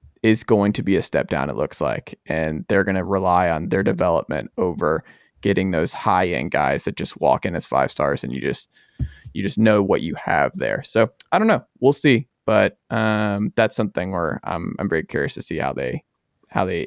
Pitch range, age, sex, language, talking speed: 100-125 Hz, 20-39, male, English, 215 wpm